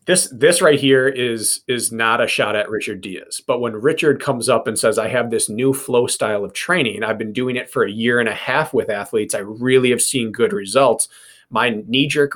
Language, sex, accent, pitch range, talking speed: English, male, American, 115-150 Hz, 230 wpm